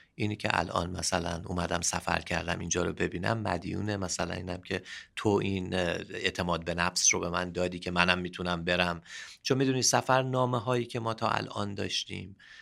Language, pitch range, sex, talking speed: Persian, 95-135 Hz, male, 170 wpm